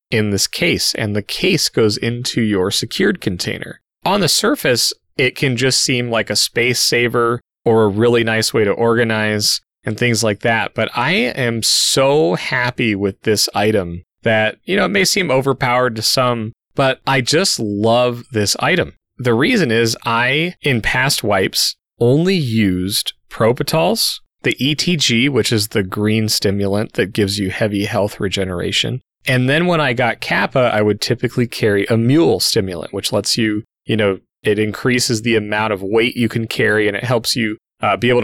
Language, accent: English, American